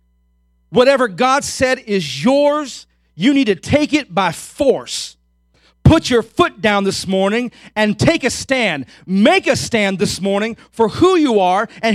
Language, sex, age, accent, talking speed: English, male, 40-59, American, 160 wpm